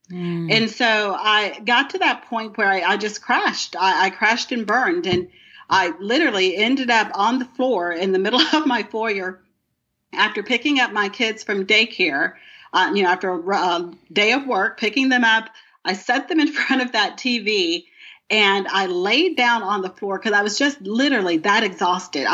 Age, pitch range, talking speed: 40-59, 190-250 Hz, 195 wpm